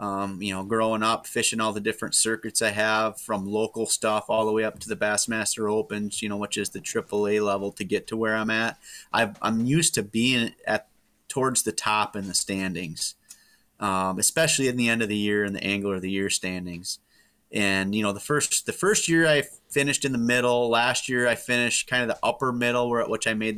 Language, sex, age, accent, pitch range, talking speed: English, male, 30-49, American, 100-120 Hz, 230 wpm